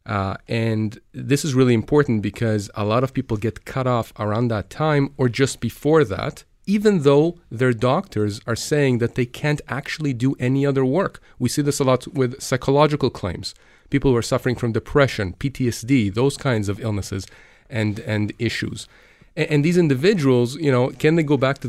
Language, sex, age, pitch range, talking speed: English, male, 30-49, 110-140 Hz, 195 wpm